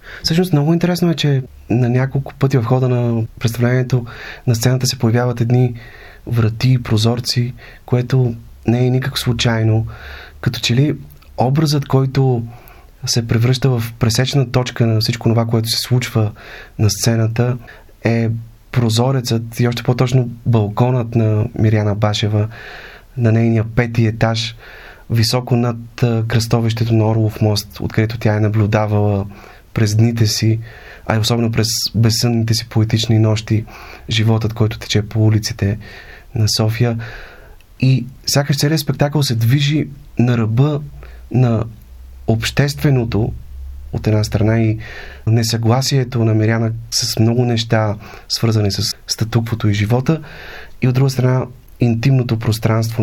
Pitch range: 110-125 Hz